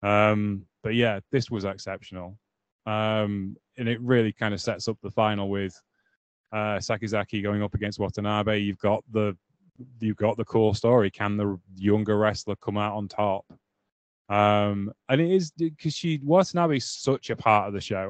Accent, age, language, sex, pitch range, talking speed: British, 20-39, English, male, 100-120 Hz, 180 wpm